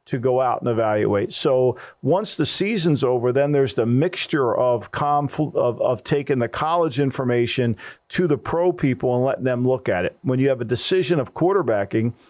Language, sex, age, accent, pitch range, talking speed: English, male, 50-69, American, 125-150 Hz, 190 wpm